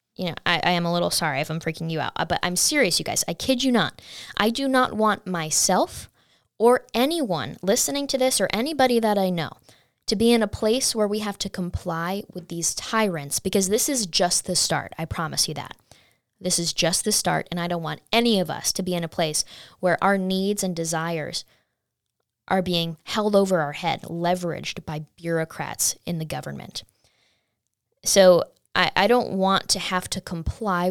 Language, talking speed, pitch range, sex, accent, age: English, 200 wpm, 170-210 Hz, female, American, 10-29